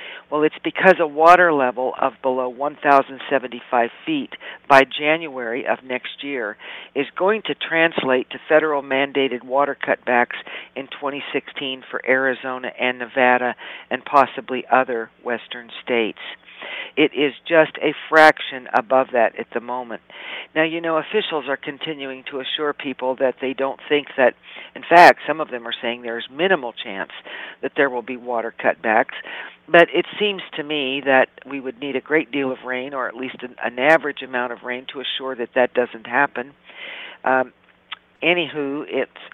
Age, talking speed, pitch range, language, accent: 50-69, 160 wpm, 125-150 Hz, English, American